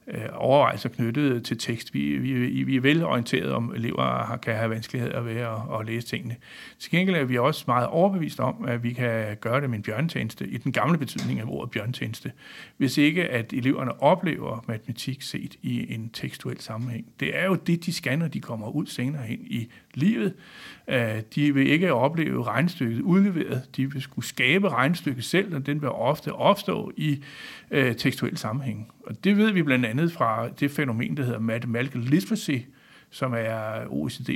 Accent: native